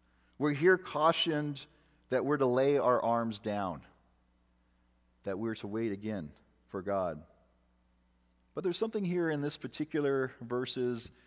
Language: English